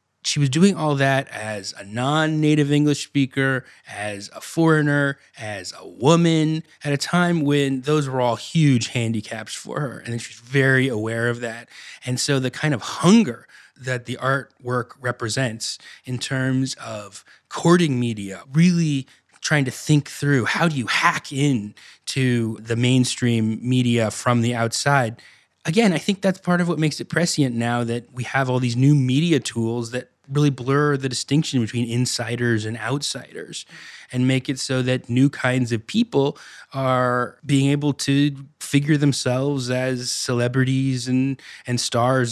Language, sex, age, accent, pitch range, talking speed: English, male, 20-39, American, 120-145 Hz, 160 wpm